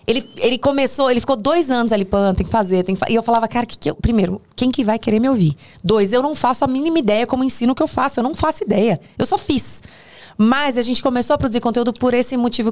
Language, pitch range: Portuguese, 190-265 Hz